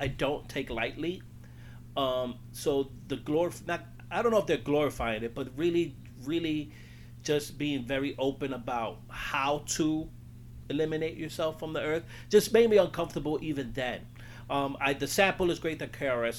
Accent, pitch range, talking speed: American, 120-150 Hz, 165 wpm